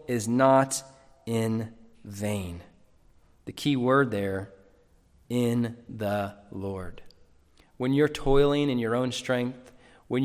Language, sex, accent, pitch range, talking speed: English, male, American, 115-145 Hz, 110 wpm